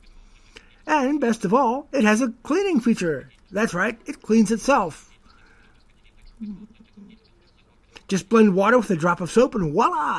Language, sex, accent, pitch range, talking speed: English, male, American, 165-255 Hz, 140 wpm